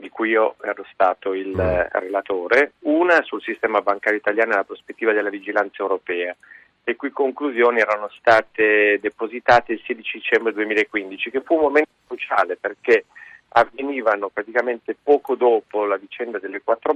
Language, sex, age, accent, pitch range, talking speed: Italian, male, 40-59, native, 105-150 Hz, 150 wpm